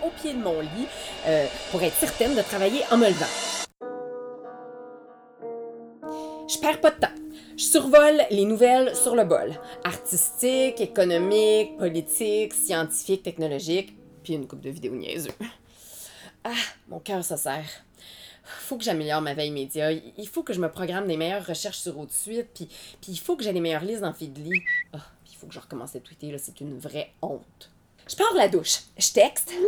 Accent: Canadian